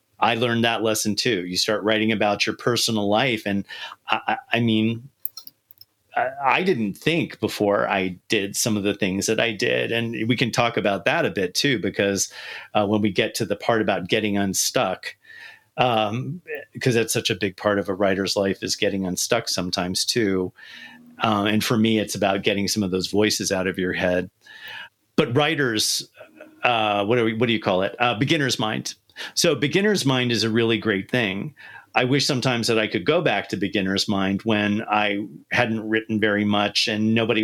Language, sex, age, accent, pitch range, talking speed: English, male, 40-59, American, 105-120 Hz, 190 wpm